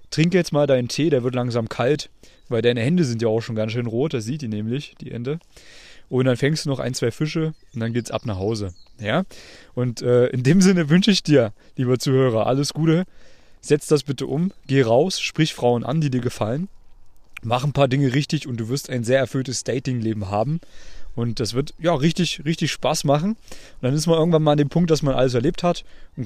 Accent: German